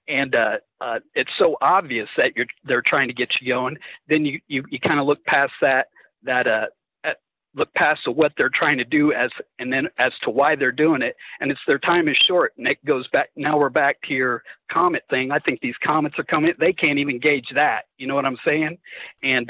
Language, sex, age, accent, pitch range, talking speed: English, male, 50-69, American, 140-165 Hz, 235 wpm